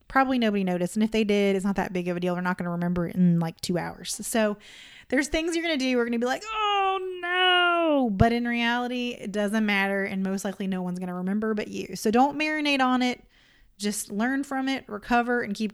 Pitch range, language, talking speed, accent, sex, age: 200-255 Hz, English, 250 wpm, American, female, 20-39